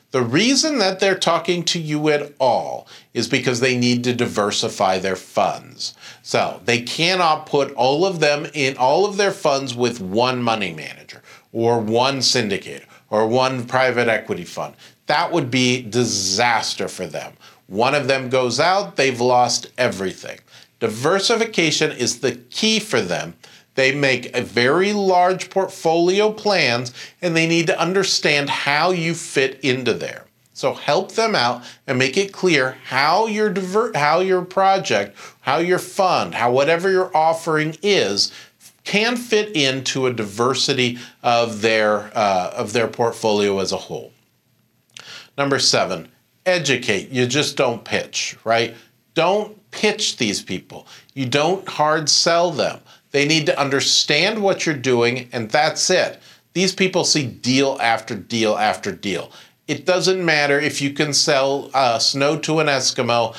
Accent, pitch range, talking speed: American, 120-180 Hz, 150 wpm